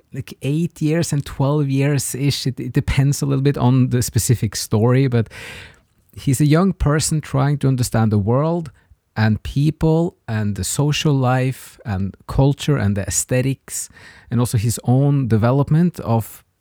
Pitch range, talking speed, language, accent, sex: 110-140 Hz, 160 wpm, English, Norwegian, male